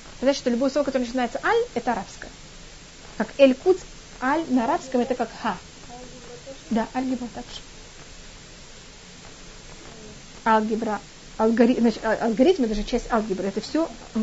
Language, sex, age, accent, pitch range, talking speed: Russian, female, 30-49, native, 225-280 Hz, 135 wpm